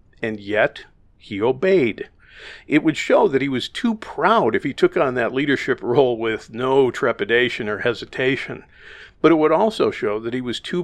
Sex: male